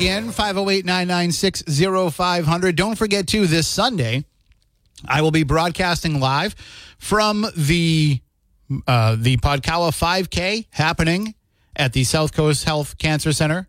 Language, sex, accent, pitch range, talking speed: English, male, American, 130-165 Hz, 110 wpm